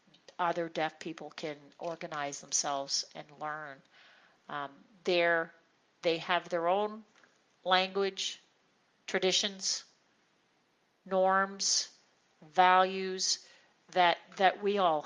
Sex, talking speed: female, 90 wpm